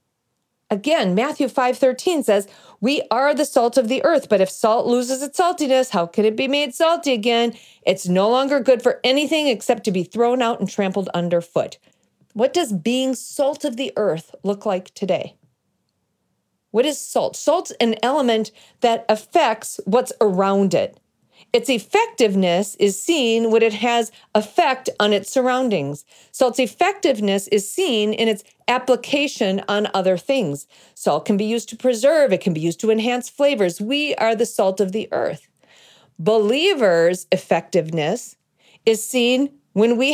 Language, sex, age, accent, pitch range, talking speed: English, female, 40-59, American, 195-265 Hz, 160 wpm